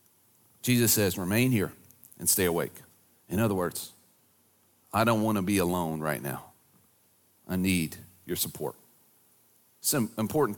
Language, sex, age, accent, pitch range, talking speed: English, male, 40-59, American, 115-160 Hz, 135 wpm